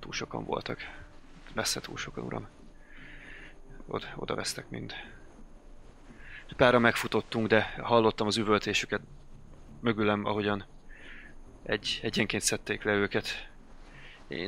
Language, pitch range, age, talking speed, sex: Hungarian, 105-110 Hz, 20-39, 105 wpm, male